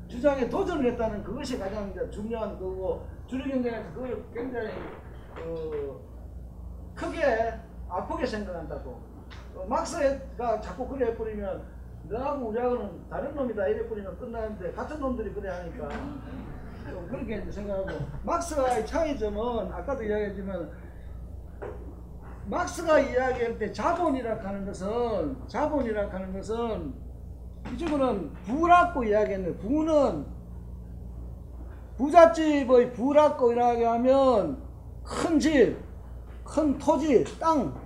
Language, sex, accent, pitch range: Korean, male, native, 210-285 Hz